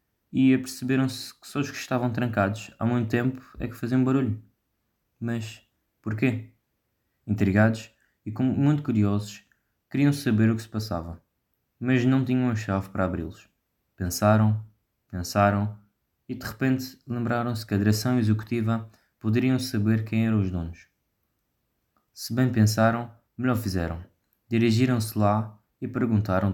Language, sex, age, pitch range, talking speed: Portuguese, male, 20-39, 100-125 Hz, 135 wpm